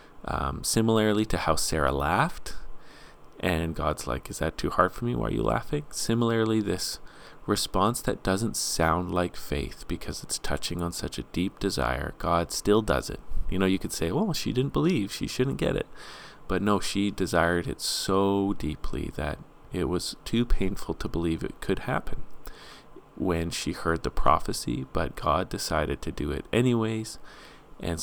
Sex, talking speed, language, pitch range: male, 175 wpm, English, 80-110 Hz